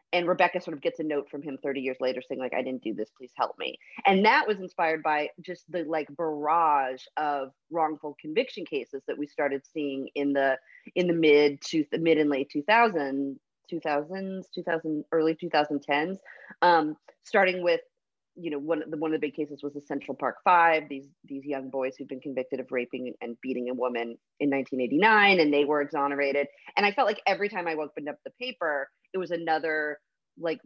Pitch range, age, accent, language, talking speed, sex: 140-180 Hz, 30-49, American, English, 205 wpm, female